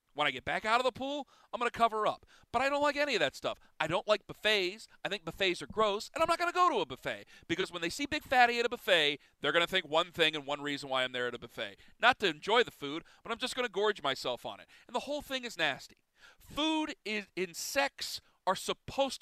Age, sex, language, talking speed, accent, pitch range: 40-59, male, English, 275 wpm, American, 190-255 Hz